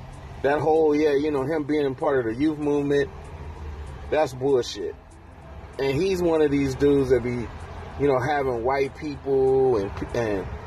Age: 30-49